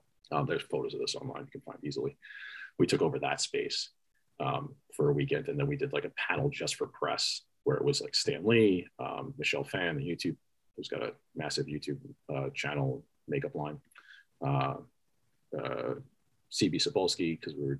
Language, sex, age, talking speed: English, male, 30-49, 190 wpm